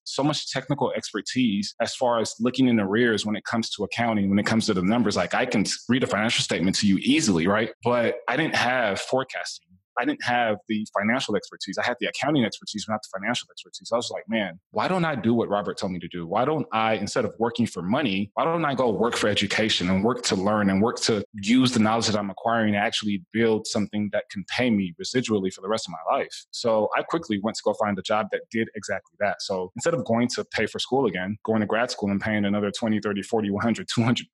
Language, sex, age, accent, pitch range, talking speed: English, male, 20-39, American, 105-125 Hz, 245 wpm